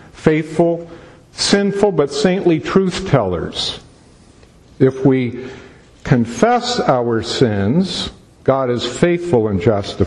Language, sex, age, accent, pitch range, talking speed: English, male, 50-69, American, 100-140 Hz, 95 wpm